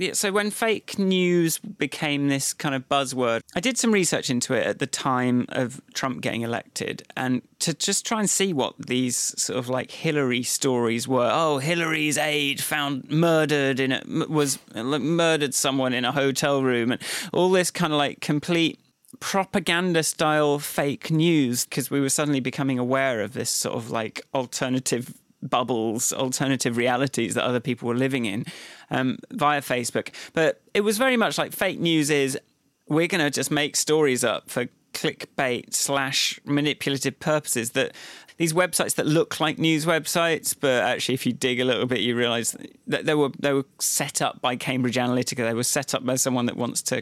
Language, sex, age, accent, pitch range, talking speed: English, male, 30-49, British, 130-160 Hz, 180 wpm